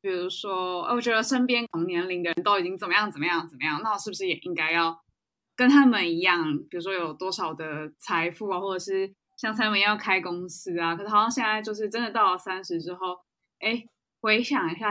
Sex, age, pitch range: female, 20-39, 175-235 Hz